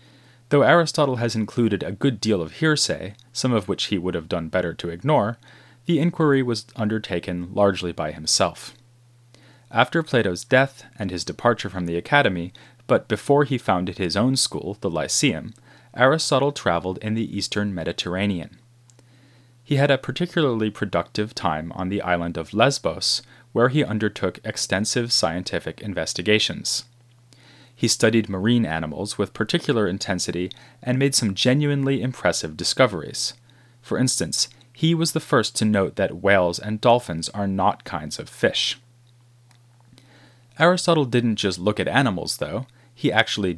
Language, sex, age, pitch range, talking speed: English, male, 30-49, 100-125 Hz, 145 wpm